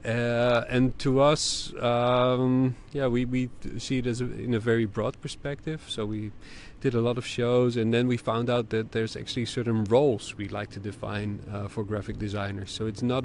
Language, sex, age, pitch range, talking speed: English, male, 40-59, 105-120 Hz, 205 wpm